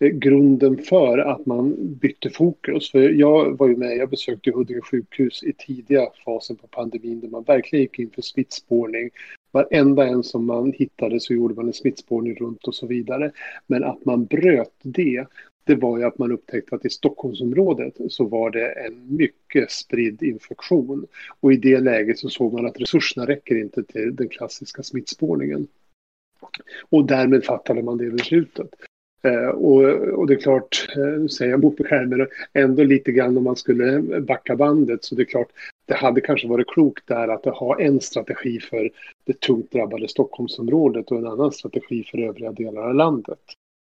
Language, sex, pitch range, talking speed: Swedish, male, 120-140 Hz, 180 wpm